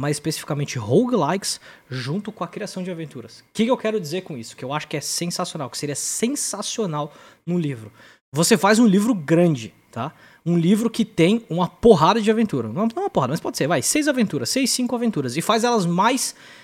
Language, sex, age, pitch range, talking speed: Portuguese, male, 20-39, 165-220 Hz, 215 wpm